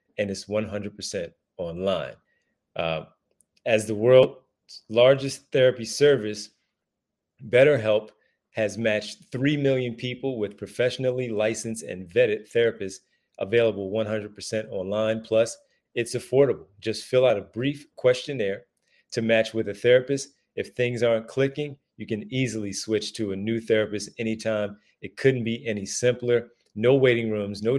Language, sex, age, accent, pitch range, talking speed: English, male, 40-59, American, 105-130 Hz, 135 wpm